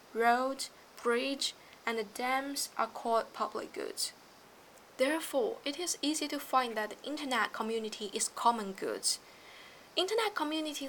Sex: female